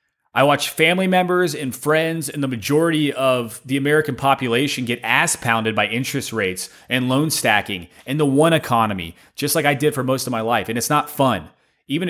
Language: English